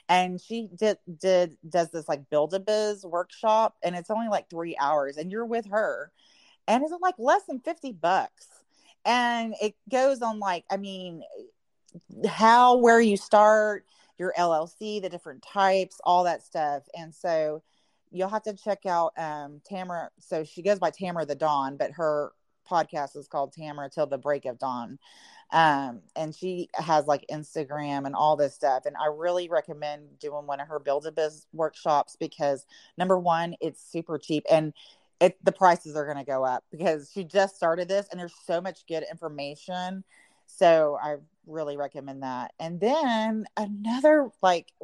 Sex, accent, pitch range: female, American, 150-200 Hz